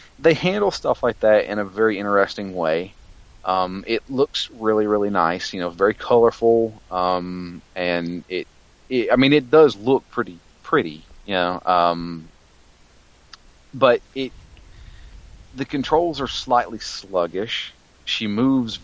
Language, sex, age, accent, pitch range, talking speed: English, male, 30-49, American, 85-115 Hz, 135 wpm